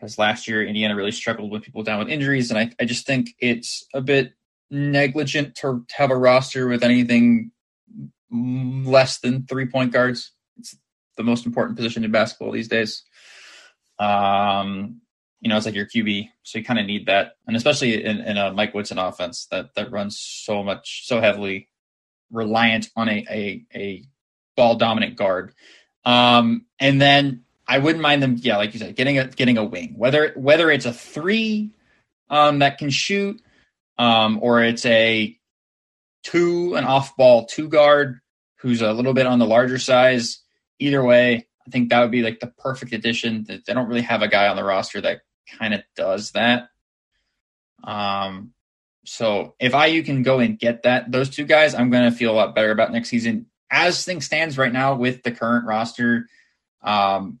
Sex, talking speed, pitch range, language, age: male, 185 wpm, 110-135 Hz, English, 20-39